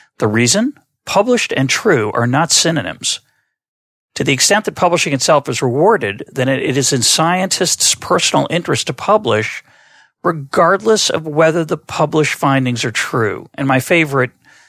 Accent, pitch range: American, 125-160 Hz